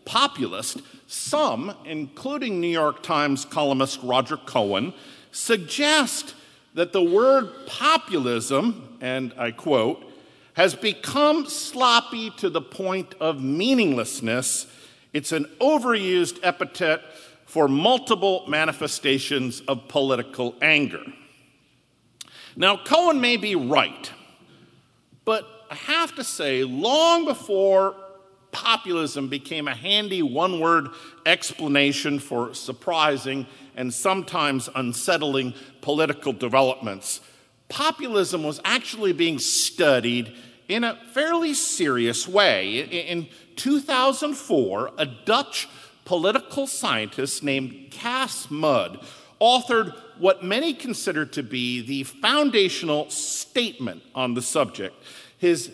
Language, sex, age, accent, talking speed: English, male, 50-69, American, 100 wpm